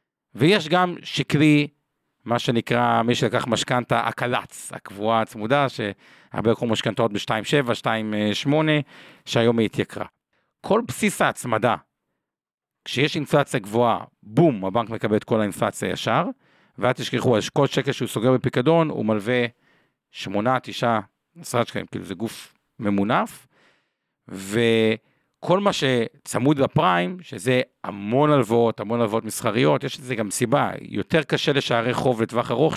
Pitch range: 115-150 Hz